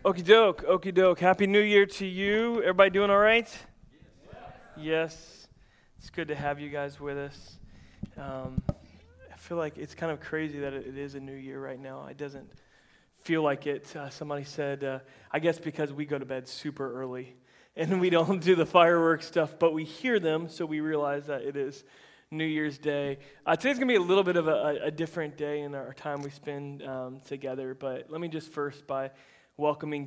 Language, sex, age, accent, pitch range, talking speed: English, male, 20-39, American, 135-155 Hz, 205 wpm